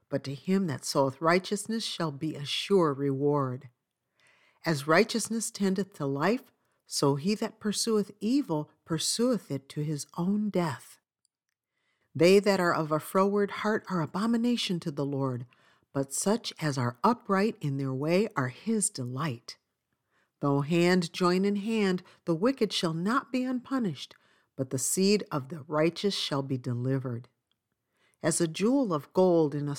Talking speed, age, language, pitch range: 155 wpm, 50-69, English, 140-200 Hz